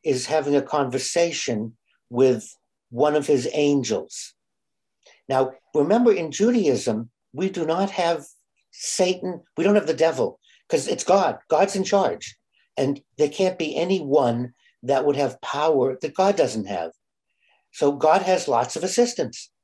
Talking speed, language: 145 wpm, English